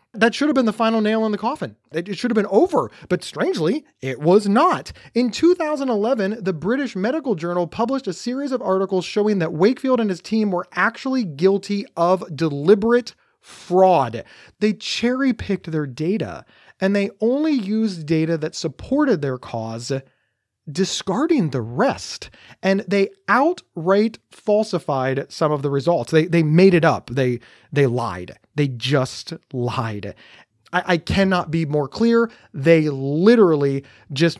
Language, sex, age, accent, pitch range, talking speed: English, male, 30-49, American, 135-215 Hz, 150 wpm